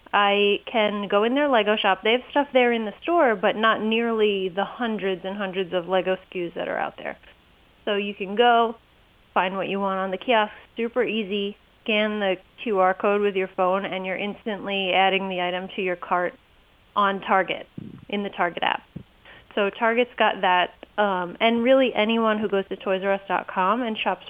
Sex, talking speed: female, 190 wpm